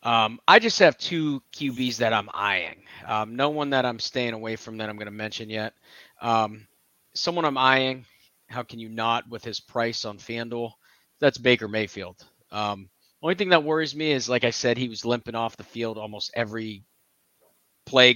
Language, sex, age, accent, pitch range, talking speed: English, male, 30-49, American, 110-125 Hz, 190 wpm